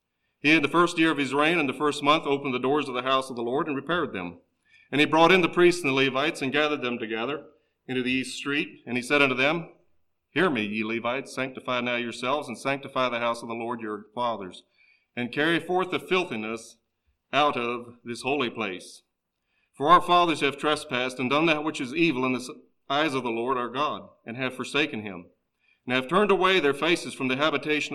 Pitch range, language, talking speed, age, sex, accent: 115-145 Hz, English, 225 wpm, 40-59, male, American